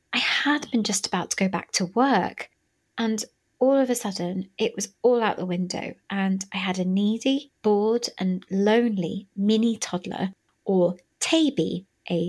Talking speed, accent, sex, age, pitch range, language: 165 wpm, British, female, 20-39, 185-255 Hz, English